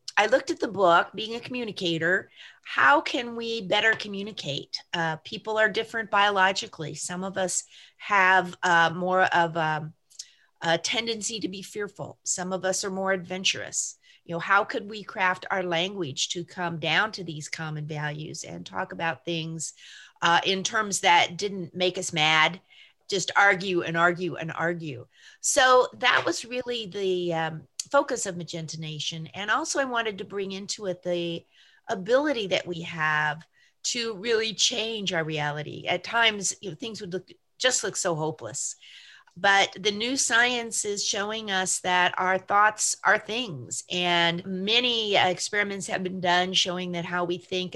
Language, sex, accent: English, female, American